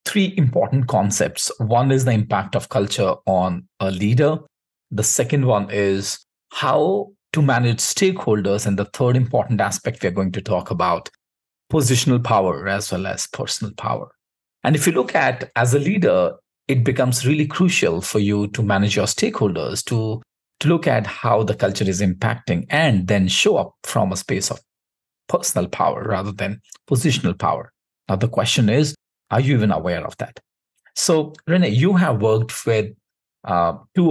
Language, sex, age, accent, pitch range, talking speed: Hindi, male, 50-69, native, 100-135 Hz, 170 wpm